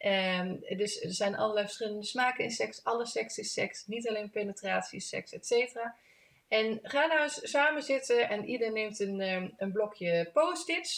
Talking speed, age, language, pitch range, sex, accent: 175 wpm, 30-49, Dutch, 180-245 Hz, female, Dutch